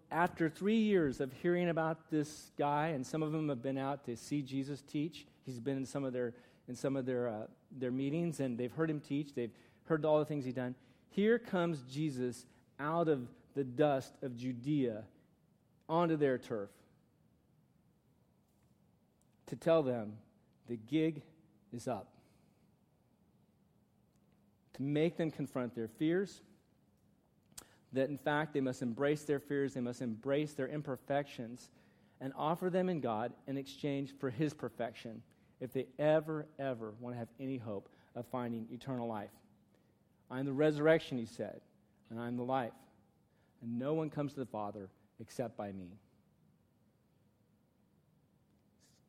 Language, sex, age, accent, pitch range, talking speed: English, male, 40-59, American, 120-150 Hz, 155 wpm